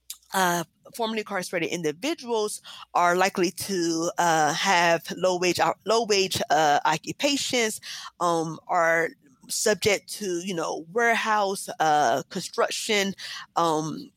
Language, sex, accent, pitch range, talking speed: English, female, American, 165-195 Hz, 105 wpm